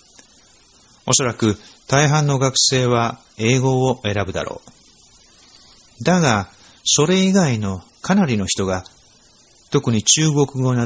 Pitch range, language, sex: 100-145 Hz, Japanese, male